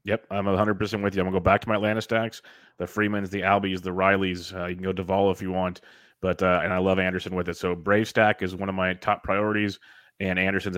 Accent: American